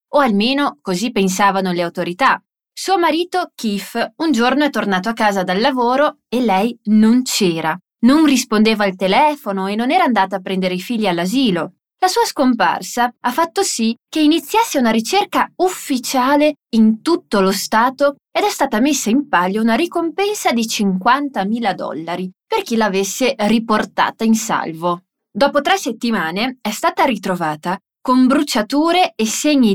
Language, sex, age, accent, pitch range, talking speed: Portuguese, female, 20-39, Italian, 200-285 Hz, 155 wpm